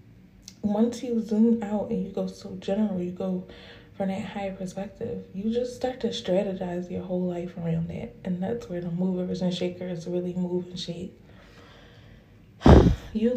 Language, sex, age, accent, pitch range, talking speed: English, female, 20-39, American, 185-230 Hz, 165 wpm